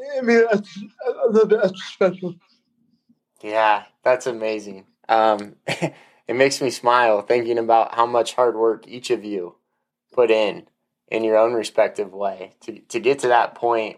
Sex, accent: male, American